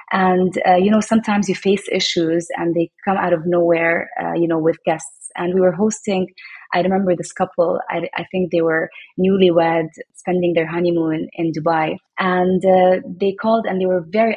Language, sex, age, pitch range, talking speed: English, female, 20-39, 175-205 Hz, 190 wpm